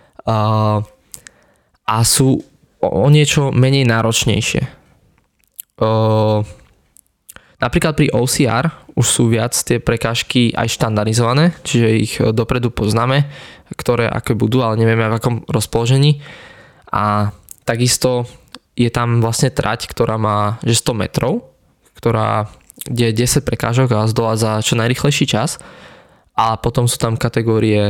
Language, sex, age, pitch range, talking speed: Slovak, male, 20-39, 110-130 Hz, 115 wpm